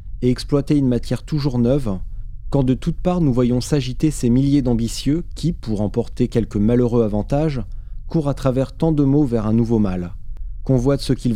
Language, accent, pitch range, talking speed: French, French, 110-135 Hz, 195 wpm